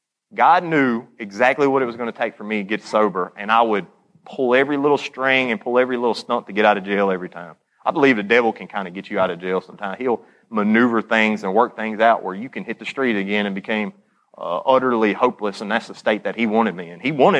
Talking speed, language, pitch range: 260 wpm, English, 95-115 Hz